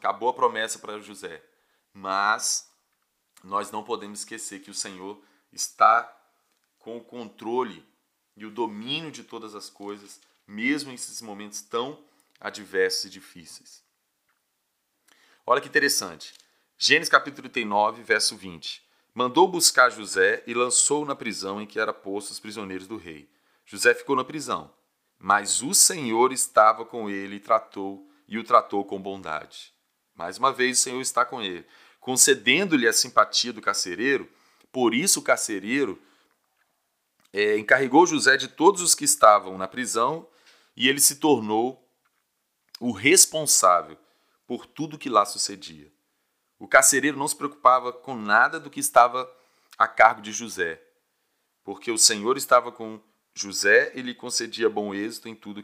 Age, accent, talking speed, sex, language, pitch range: 30-49, Brazilian, 150 wpm, male, Portuguese, 100-140 Hz